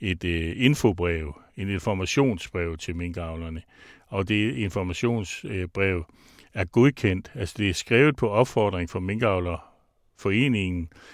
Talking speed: 115 wpm